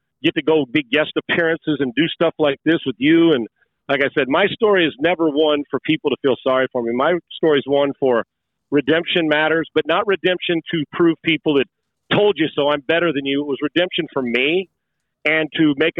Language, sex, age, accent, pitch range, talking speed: English, male, 40-59, American, 140-165 Hz, 220 wpm